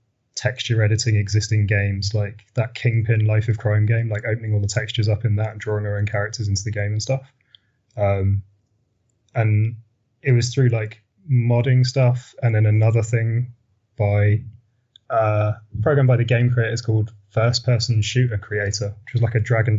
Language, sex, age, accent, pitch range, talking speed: English, male, 20-39, British, 105-120 Hz, 180 wpm